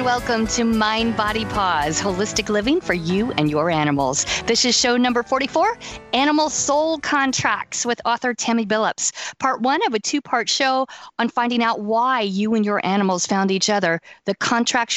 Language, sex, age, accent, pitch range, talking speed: English, female, 50-69, American, 195-260 Hz, 170 wpm